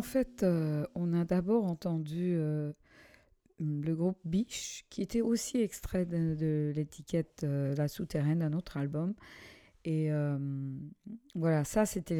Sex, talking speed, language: female, 150 wpm, English